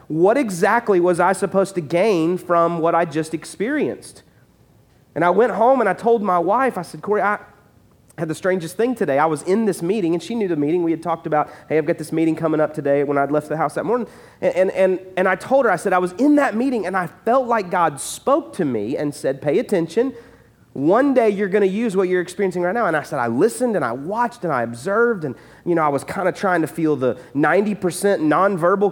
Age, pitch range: 40-59, 155-210 Hz